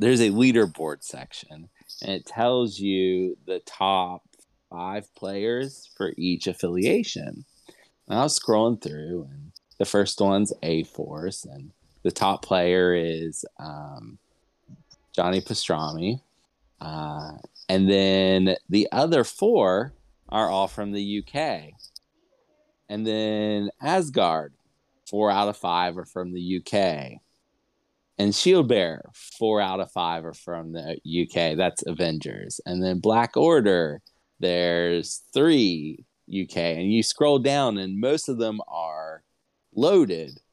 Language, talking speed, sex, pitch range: English, 125 wpm, male, 85-110 Hz